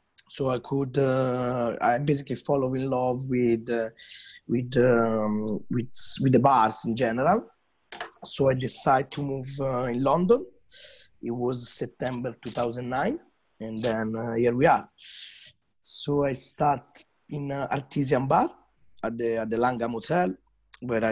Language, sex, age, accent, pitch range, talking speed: English, male, 30-49, Italian, 115-140 Hz, 145 wpm